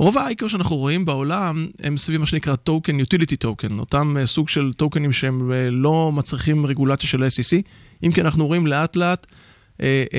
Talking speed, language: 170 wpm, Hebrew